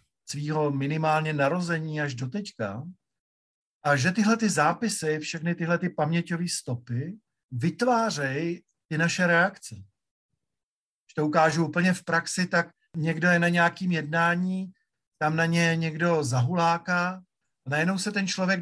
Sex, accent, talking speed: male, native, 135 wpm